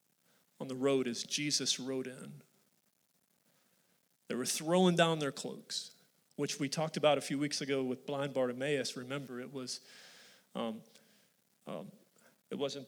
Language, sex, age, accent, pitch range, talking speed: English, male, 40-59, American, 140-190 Hz, 145 wpm